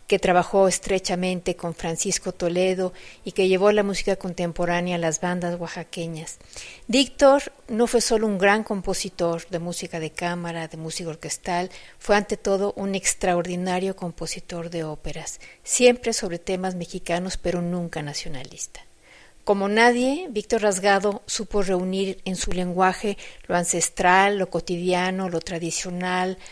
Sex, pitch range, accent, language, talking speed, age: female, 175-205 Hz, Mexican, Spanish, 135 wpm, 40-59